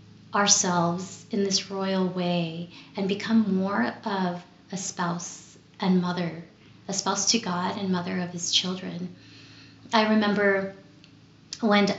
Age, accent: 30-49, American